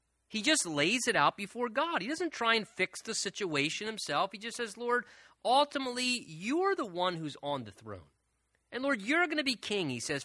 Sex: male